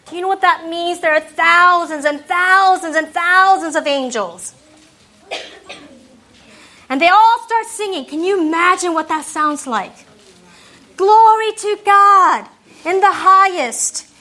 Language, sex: English, female